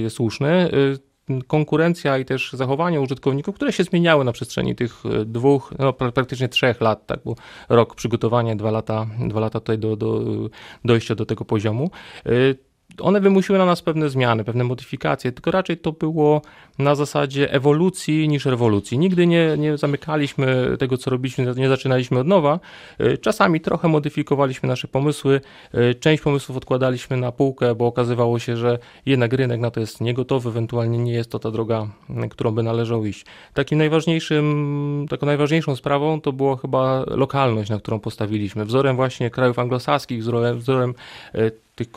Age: 30-49